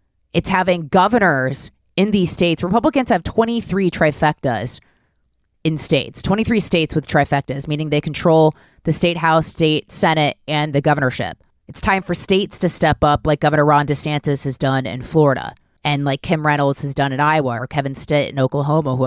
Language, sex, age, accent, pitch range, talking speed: English, female, 20-39, American, 140-175 Hz, 175 wpm